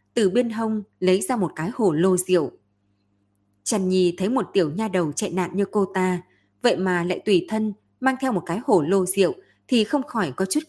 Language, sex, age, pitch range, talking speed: Vietnamese, female, 20-39, 165-210 Hz, 220 wpm